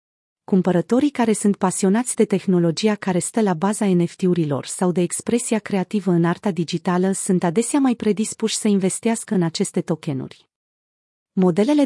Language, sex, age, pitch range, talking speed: Romanian, female, 30-49, 180-220 Hz, 140 wpm